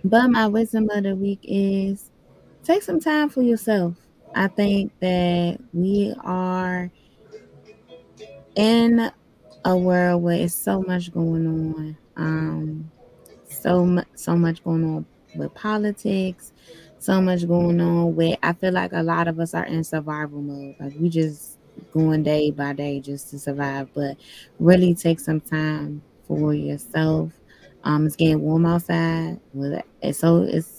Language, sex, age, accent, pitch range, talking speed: English, female, 20-39, American, 150-175 Hz, 145 wpm